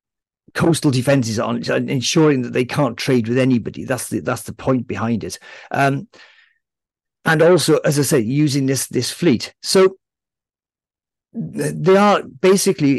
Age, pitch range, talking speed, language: 50-69, 125-160 Hz, 145 wpm, English